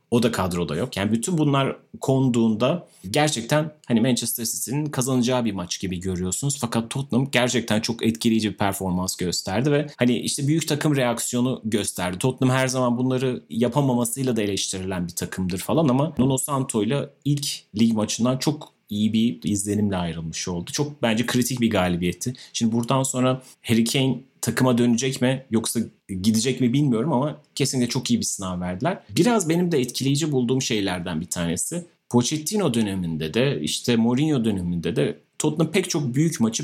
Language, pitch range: Turkish, 100-135 Hz